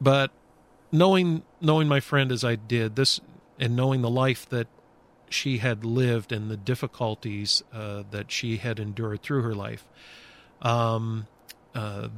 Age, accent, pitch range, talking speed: 40-59, American, 110-130 Hz, 150 wpm